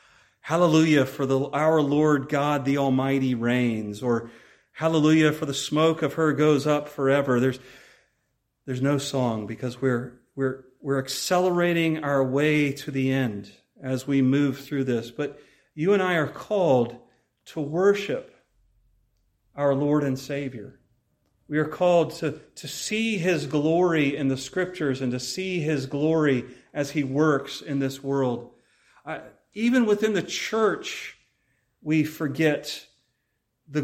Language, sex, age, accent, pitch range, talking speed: English, male, 40-59, American, 130-160 Hz, 140 wpm